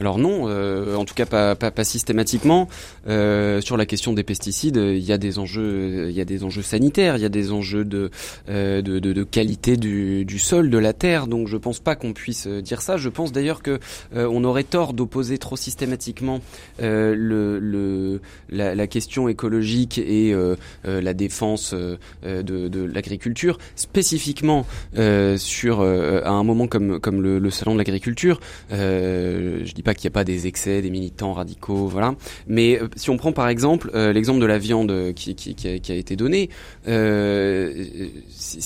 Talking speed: 195 wpm